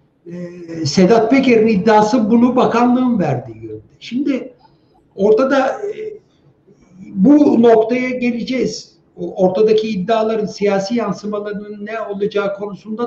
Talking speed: 85 wpm